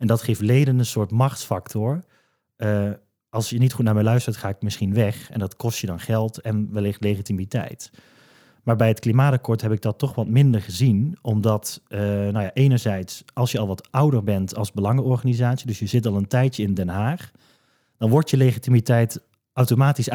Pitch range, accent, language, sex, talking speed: 105-125 Hz, Dutch, Dutch, male, 190 wpm